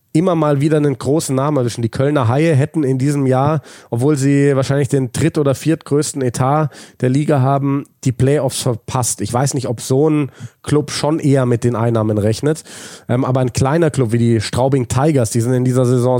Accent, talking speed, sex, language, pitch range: German, 200 wpm, male, German, 120-145 Hz